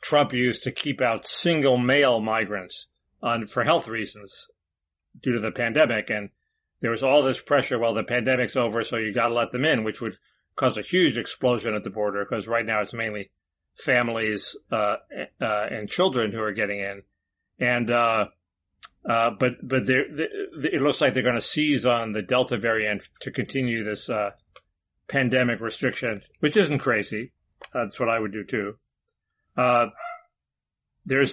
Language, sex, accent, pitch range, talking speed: English, male, American, 110-135 Hz, 175 wpm